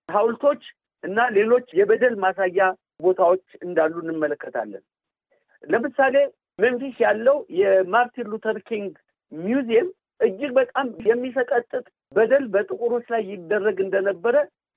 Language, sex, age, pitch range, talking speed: Amharic, male, 50-69, 195-265 Hz, 95 wpm